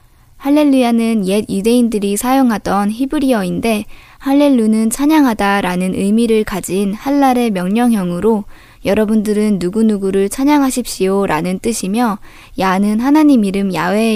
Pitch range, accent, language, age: 195-250 Hz, native, Korean, 20-39